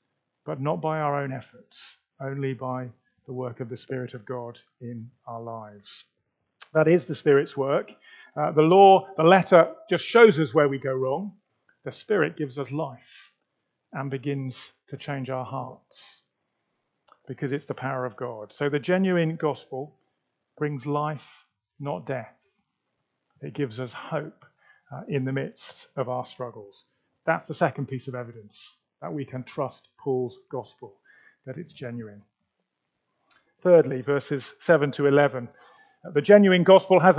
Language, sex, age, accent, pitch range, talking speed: English, male, 40-59, British, 130-170 Hz, 155 wpm